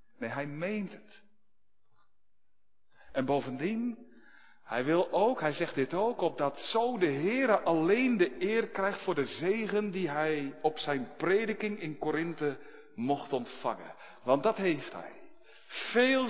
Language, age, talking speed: Dutch, 50-69, 140 wpm